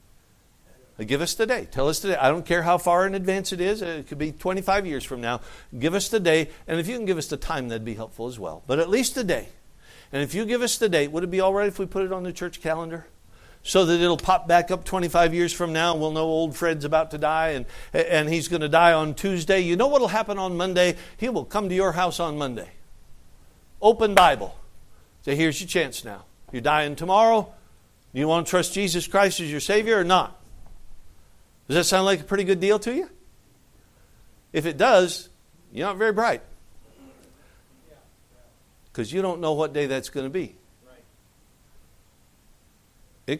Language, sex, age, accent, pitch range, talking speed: English, male, 60-79, American, 135-195 Hz, 215 wpm